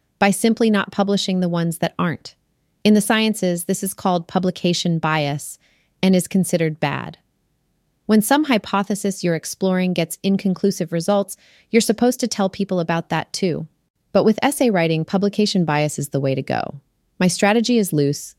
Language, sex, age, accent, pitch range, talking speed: English, female, 30-49, American, 160-195 Hz, 165 wpm